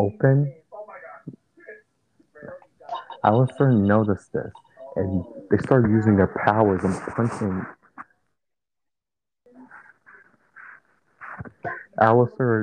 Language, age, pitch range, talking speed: English, 30-49, 100-140 Hz, 60 wpm